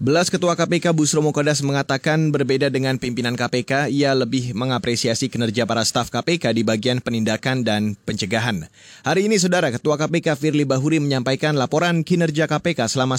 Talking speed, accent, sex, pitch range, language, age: 155 wpm, native, male, 130-160 Hz, Indonesian, 20-39